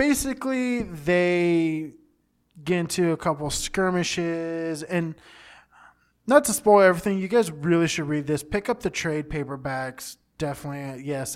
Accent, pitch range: American, 135-170 Hz